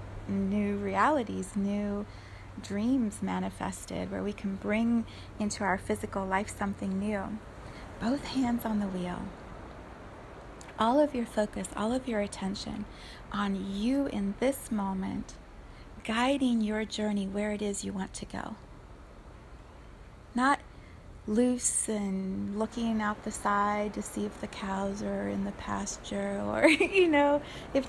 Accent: American